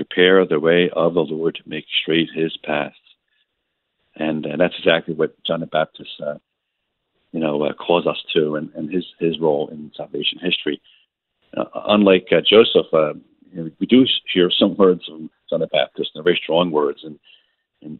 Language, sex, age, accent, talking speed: English, male, 50-69, American, 190 wpm